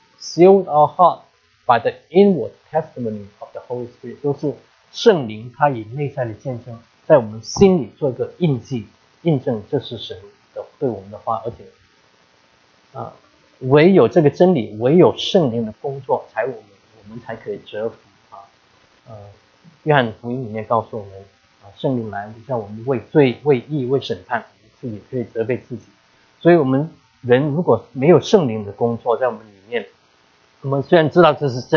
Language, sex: English, male